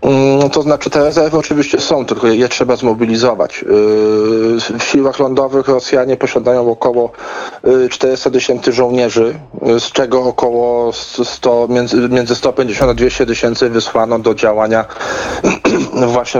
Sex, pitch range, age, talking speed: male, 115-125 Hz, 40-59, 115 wpm